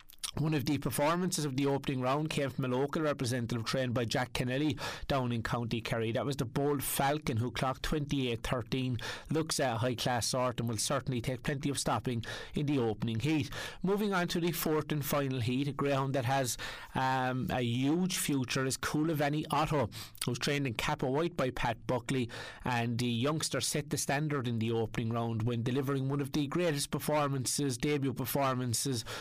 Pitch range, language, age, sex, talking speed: 120-145 Hz, English, 30-49, male, 185 wpm